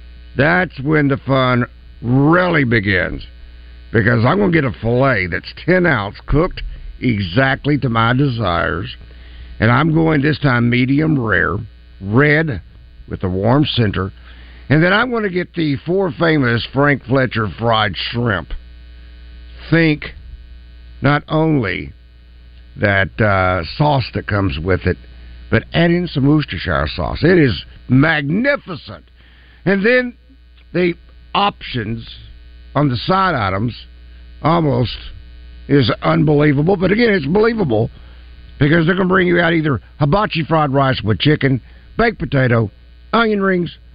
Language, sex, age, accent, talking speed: English, male, 60-79, American, 130 wpm